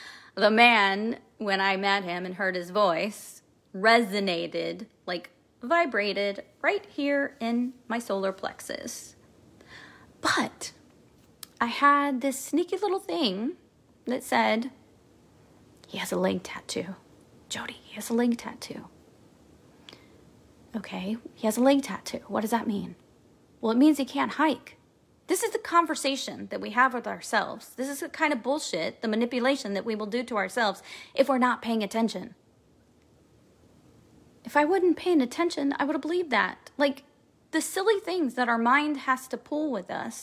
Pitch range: 220-280 Hz